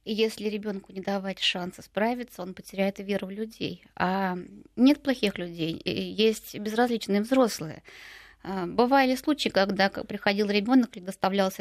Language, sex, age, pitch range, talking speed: Russian, female, 20-39, 195-245 Hz, 130 wpm